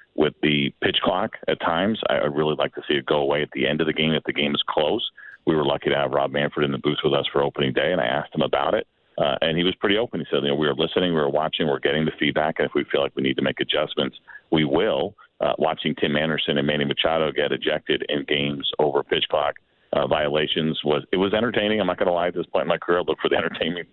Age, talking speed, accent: 40-59, 280 wpm, American